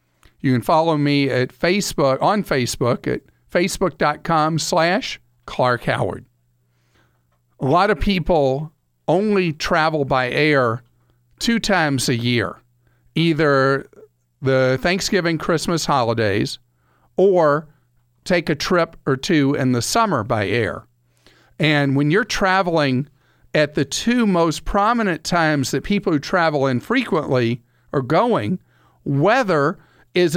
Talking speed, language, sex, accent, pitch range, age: 120 wpm, English, male, American, 125-165 Hz, 50-69